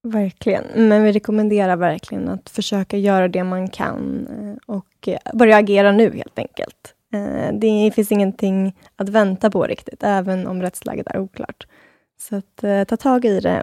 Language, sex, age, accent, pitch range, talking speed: Swedish, female, 20-39, native, 190-215 Hz, 150 wpm